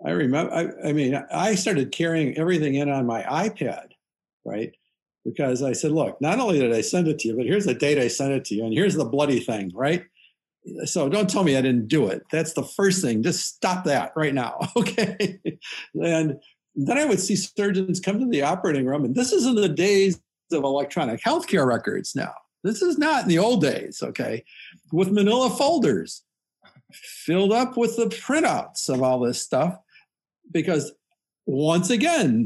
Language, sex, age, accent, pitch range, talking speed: English, male, 50-69, American, 140-205 Hz, 190 wpm